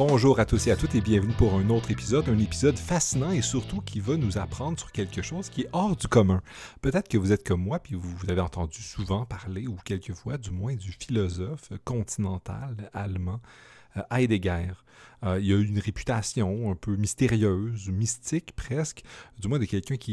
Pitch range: 95-125 Hz